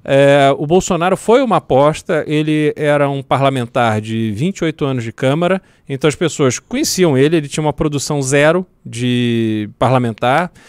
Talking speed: 150 wpm